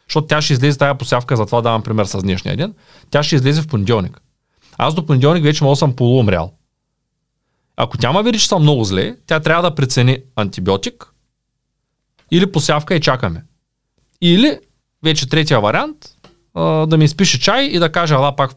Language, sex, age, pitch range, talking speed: Bulgarian, male, 30-49, 115-160 Hz, 180 wpm